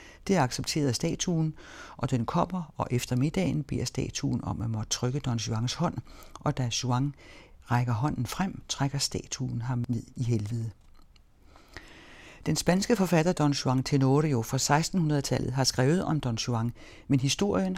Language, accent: Danish, native